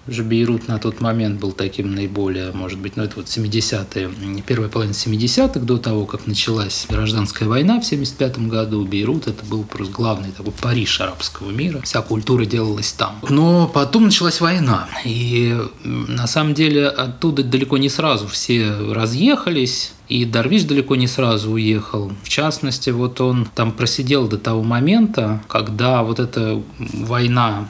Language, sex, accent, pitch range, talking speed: Russian, male, native, 105-130 Hz, 155 wpm